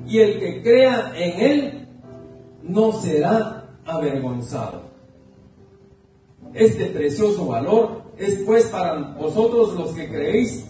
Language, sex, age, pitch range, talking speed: Spanish, male, 40-59, 145-235 Hz, 105 wpm